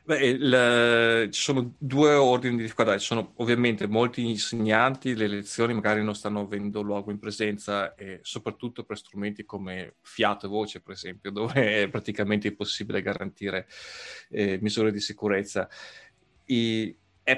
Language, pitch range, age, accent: Italian, 105-120 Hz, 30-49, native